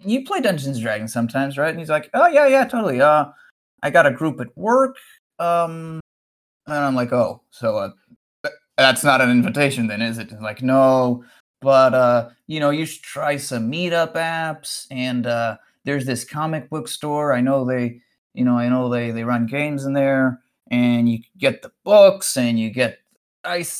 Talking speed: 190 wpm